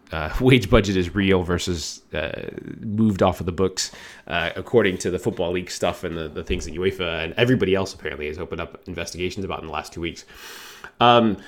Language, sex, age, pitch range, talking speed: English, male, 20-39, 90-115 Hz, 210 wpm